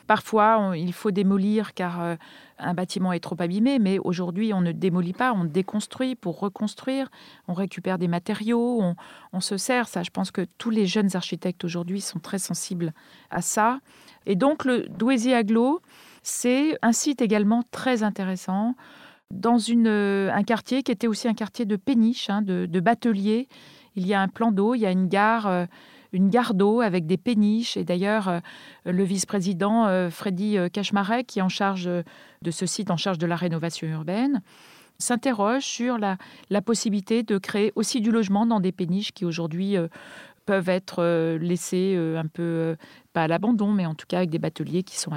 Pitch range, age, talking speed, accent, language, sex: 180-230 Hz, 40-59, 190 wpm, French, French, female